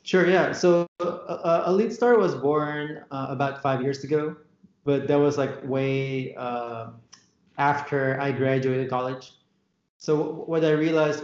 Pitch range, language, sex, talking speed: 130-145 Hz, English, male, 145 wpm